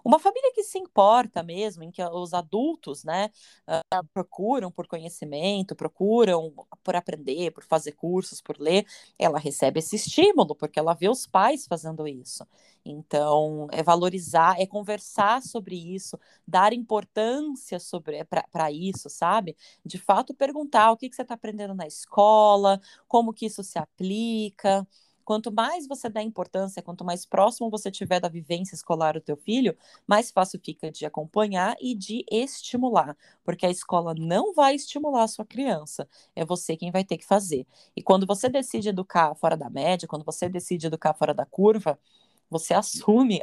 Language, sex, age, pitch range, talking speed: Portuguese, female, 20-39, 160-215 Hz, 165 wpm